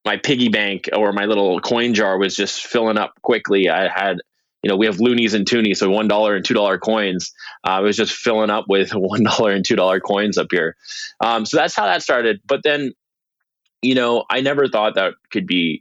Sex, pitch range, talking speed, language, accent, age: male, 90-115 Hz, 215 wpm, English, American, 20-39